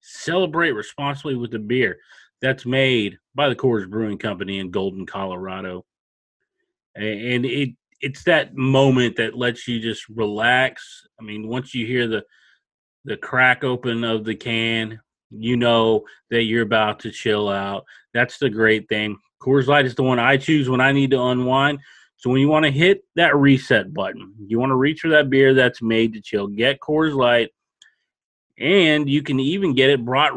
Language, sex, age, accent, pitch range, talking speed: English, male, 30-49, American, 110-145 Hz, 180 wpm